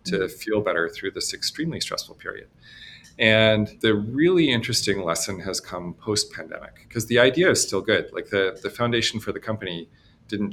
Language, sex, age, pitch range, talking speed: English, male, 40-59, 95-120 Hz, 170 wpm